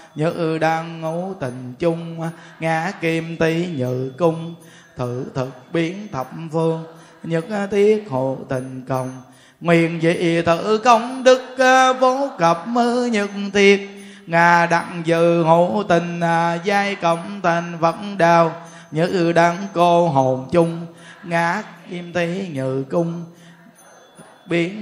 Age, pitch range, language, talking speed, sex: 20-39, 160-185 Hz, Vietnamese, 125 wpm, male